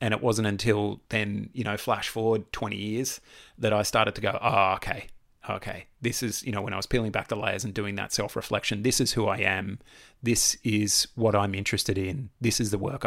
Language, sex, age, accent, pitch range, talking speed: English, male, 30-49, Australian, 100-115 Hz, 225 wpm